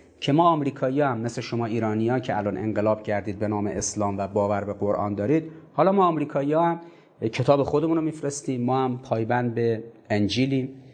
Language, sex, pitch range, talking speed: Persian, male, 115-170 Hz, 180 wpm